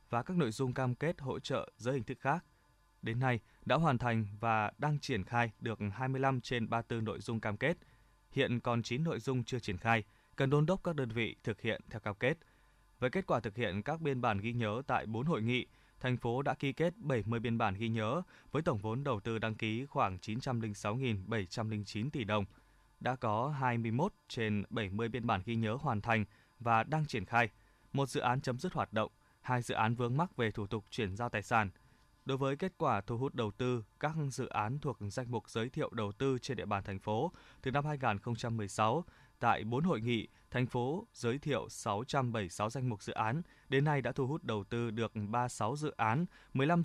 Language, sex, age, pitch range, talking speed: Vietnamese, male, 20-39, 110-135 Hz, 215 wpm